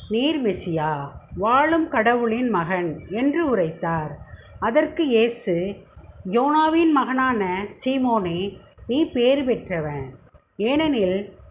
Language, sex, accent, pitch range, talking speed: Tamil, female, native, 185-280 Hz, 85 wpm